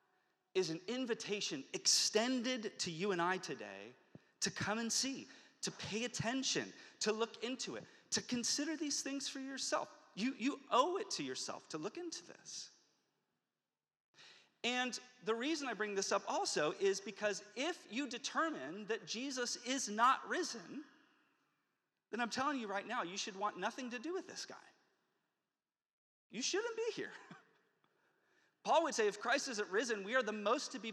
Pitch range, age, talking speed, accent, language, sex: 215-300 Hz, 30-49, 165 wpm, American, English, male